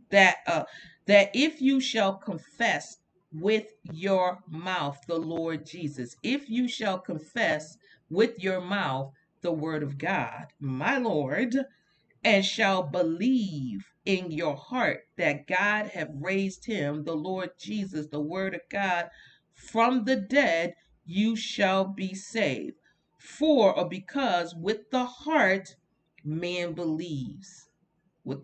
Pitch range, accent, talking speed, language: 160-225 Hz, American, 125 wpm, English